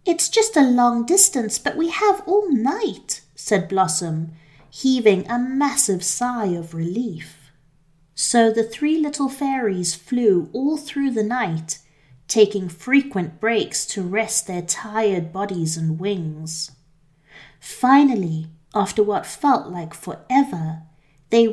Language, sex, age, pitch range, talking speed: English, female, 30-49, 165-245 Hz, 125 wpm